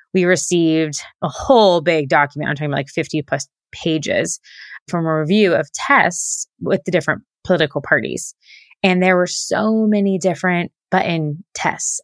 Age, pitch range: 20-39, 155-200 Hz